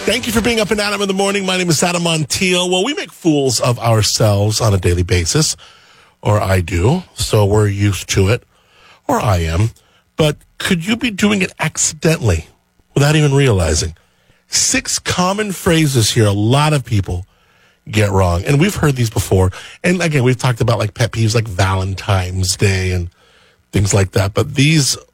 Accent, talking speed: American, 185 wpm